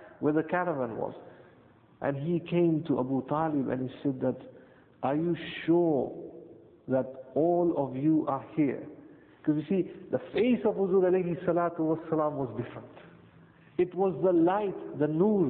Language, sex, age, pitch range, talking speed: English, male, 50-69, 155-190 Hz, 160 wpm